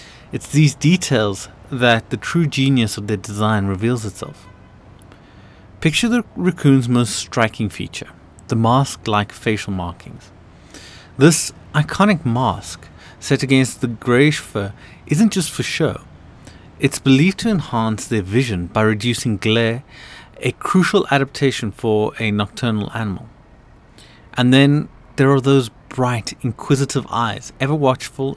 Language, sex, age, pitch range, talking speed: English, male, 30-49, 105-150 Hz, 125 wpm